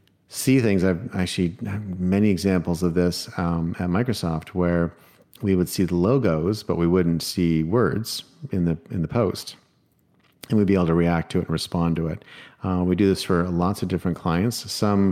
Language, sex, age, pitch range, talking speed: English, male, 40-59, 85-100 Hz, 195 wpm